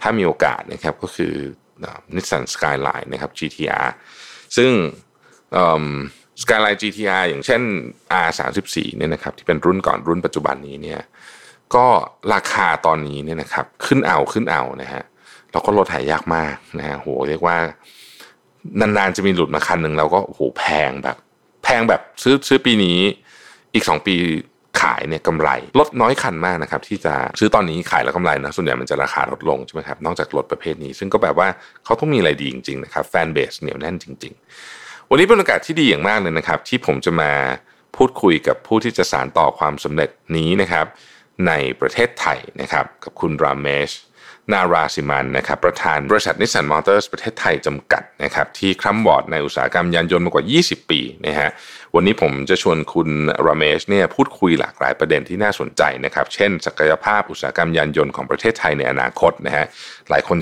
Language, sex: Thai, male